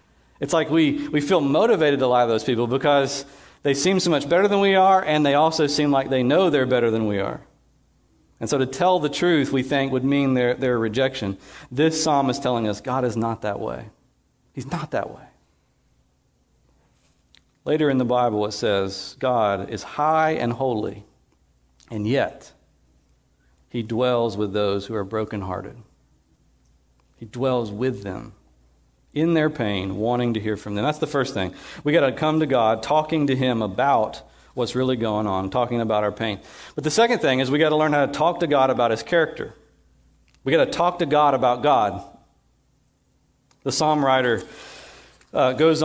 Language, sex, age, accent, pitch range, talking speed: English, male, 50-69, American, 110-150 Hz, 185 wpm